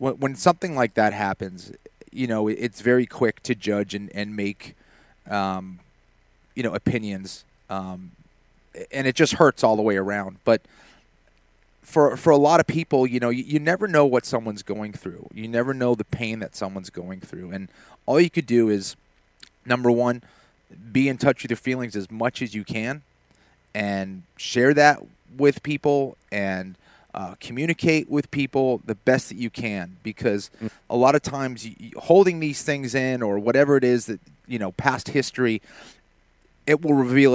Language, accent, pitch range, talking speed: English, American, 100-130 Hz, 180 wpm